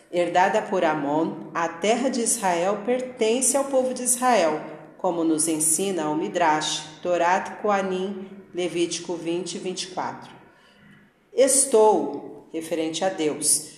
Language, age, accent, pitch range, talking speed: Portuguese, 40-59, Brazilian, 165-215 Hz, 110 wpm